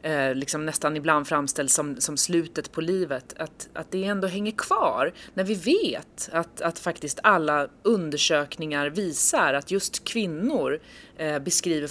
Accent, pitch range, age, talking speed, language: native, 140-180 Hz, 30-49, 135 wpm, Swedish